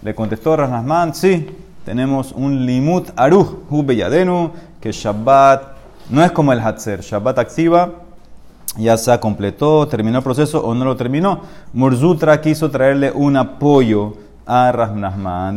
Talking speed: 135 wpm